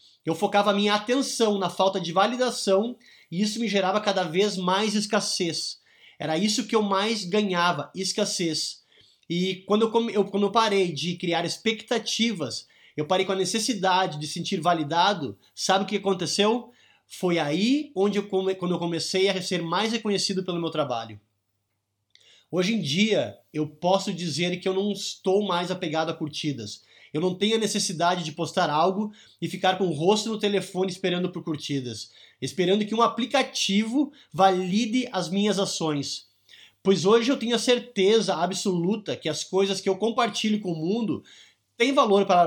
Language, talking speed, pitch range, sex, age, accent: Portuguese, 170 wpm, 165-215 Hz, male, 20-39, Brazilian